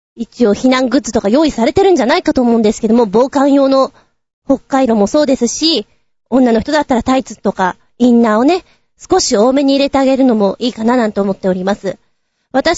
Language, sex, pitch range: Japanese, female, 225-315 Hz